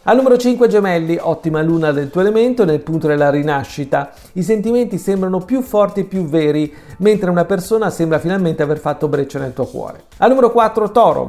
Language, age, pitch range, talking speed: Italian, 40-59, 155-210 Hz, 190 wpm